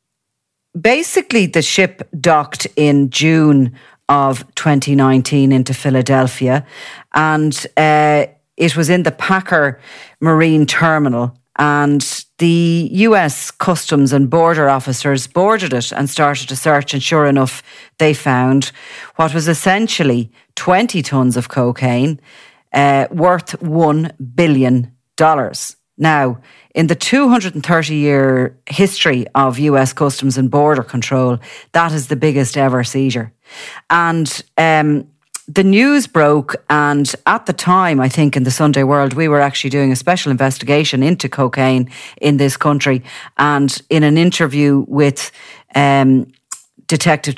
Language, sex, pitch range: English, female, 130-155 Hz